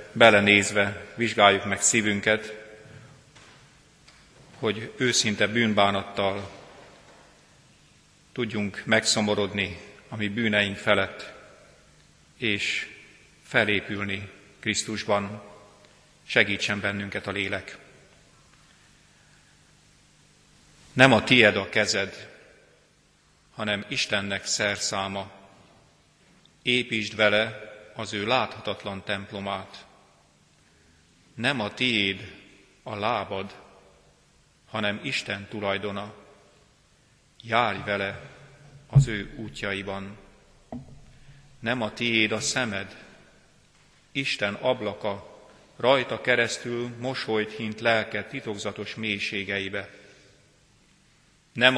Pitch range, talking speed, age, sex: 100-120 Hz, 70 wpm, 40-59, male